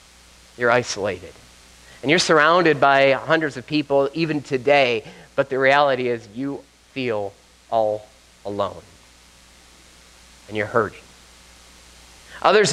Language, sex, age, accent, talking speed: English, male, 30-49, American, 110 wpm